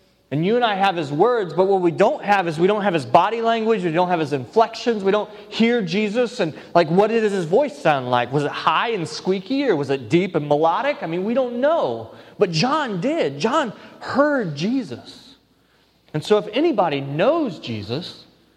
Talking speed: 205 wpm